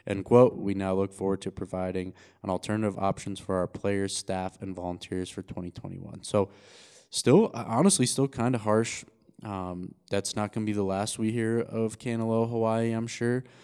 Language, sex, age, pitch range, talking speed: English, male, 20-39, 95-115 Hz, 175 wpm